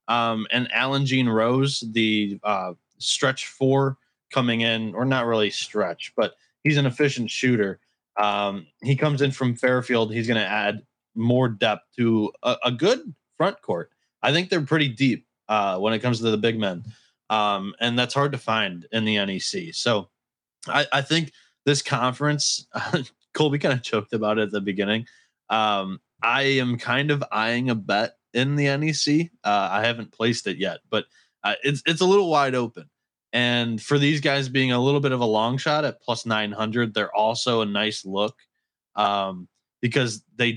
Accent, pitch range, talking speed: American, 105-135 Hz, 180 wpm